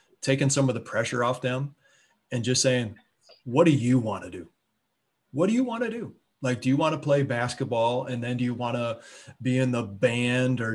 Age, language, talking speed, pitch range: 20-39, English, 225 wpm, 115-130 Hz